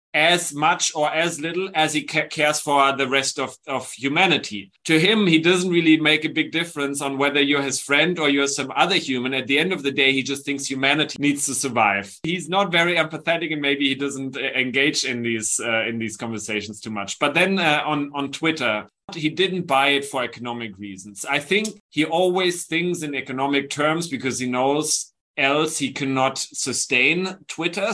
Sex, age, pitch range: male, 30-49, 130-160 Hz